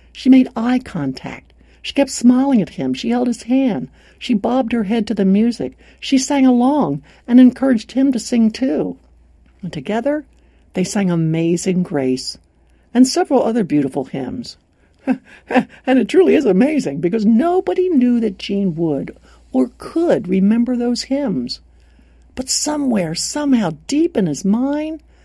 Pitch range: 170-260 Hz